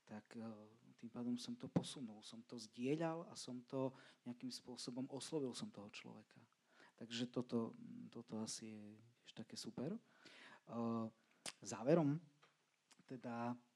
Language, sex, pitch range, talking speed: Slovak, male, 110-140 Hz, 120 wpm